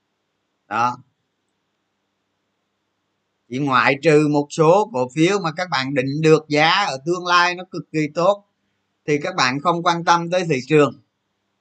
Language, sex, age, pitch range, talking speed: Vietnamese, male, 20-39, 105-150 Hz, 155 wpm